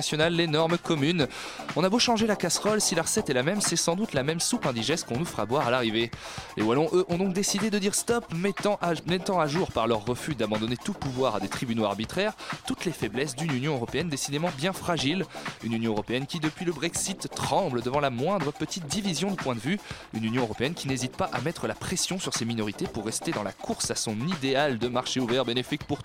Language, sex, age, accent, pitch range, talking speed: French, male, 20-39, French, 130-185 Hz, 235 wpm